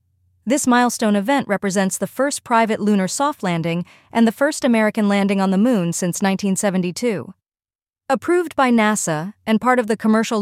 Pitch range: 180-230 Hz